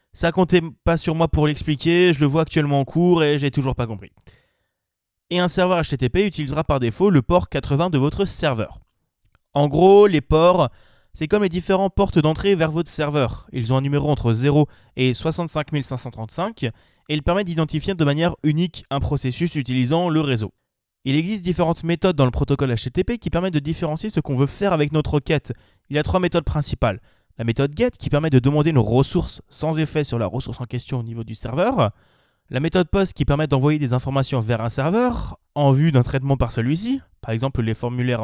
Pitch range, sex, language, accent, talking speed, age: 125-175 Hz, male, French, French, 205 wpm, 20-39